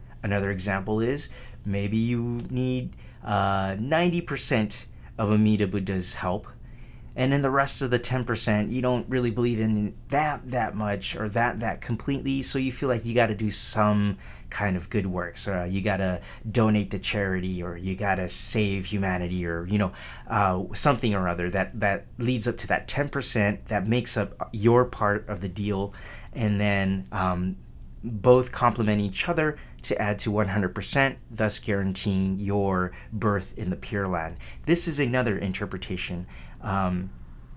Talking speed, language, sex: 165 wpm, English, male